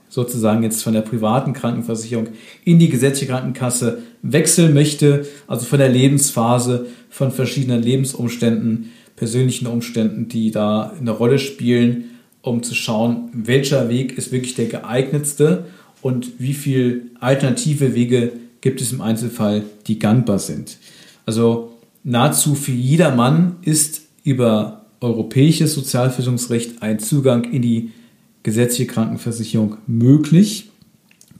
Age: 50-69